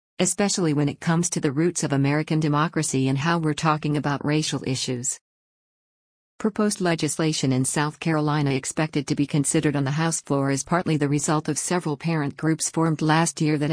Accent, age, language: American, 50-69, English